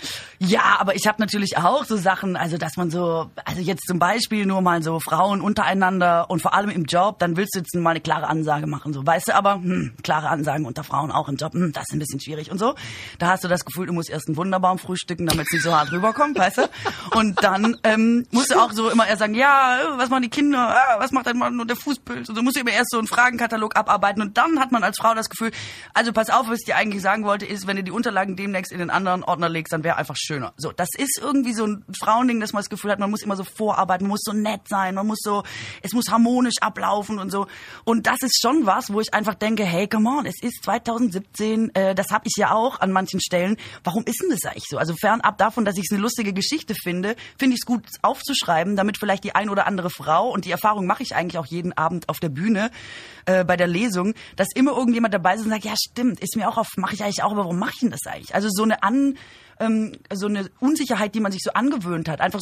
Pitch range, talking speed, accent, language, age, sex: 180-225 Hz, 265 wpm, German, German, 20-39, female